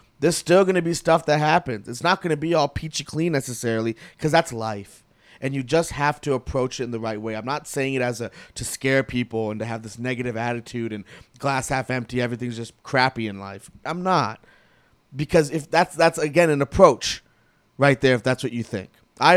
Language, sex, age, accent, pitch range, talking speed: English, male, 30-49, American, 115-145 Hz, 225 wpm